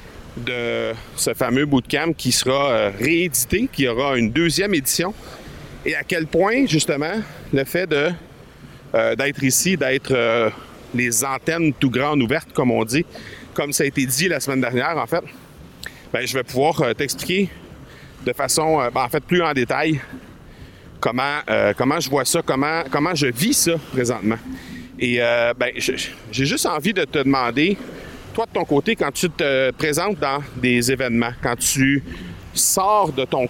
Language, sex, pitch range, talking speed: French, male, 120-155 Hz, 170 wpm